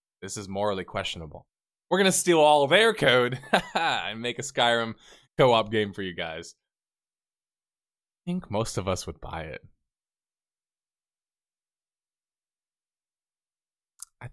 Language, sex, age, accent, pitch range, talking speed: English, male, 20-39, American, 100-150 Hz, 125 wpm